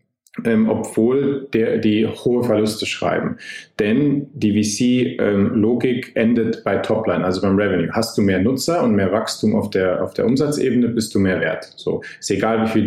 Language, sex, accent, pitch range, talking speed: German, male, German, 105-120 Hz, 175 wpm